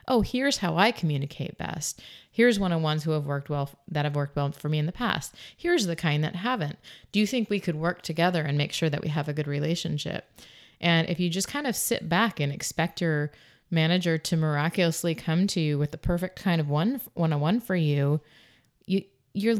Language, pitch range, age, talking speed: English, 150-170 Hz, 30-49, 215 wpm